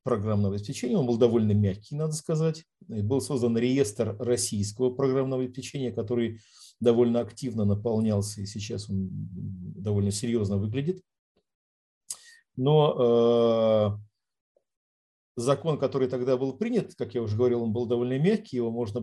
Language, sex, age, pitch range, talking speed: Russian, male, 50-69, 105-130 Hz, 130 wpm